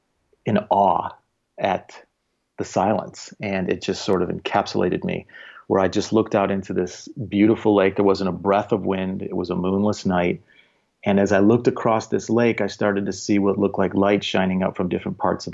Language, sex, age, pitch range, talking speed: English, male, 40-59, 95-105 Hz, 205 wpm